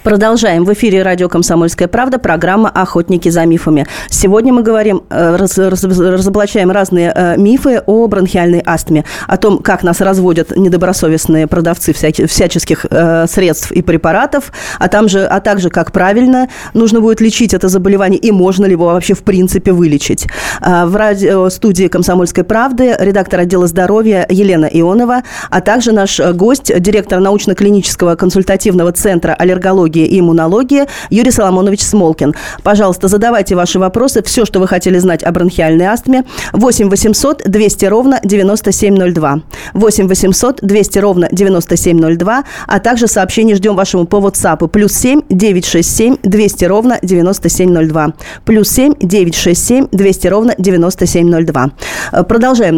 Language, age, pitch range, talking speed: Russian, 20-39, 175-215 Hz, 135 wpm